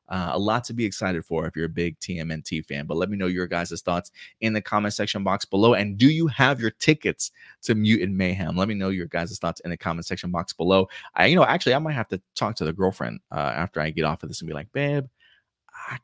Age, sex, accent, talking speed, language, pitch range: 20-39, male, American, 265 wpm, English, 90-125 Hz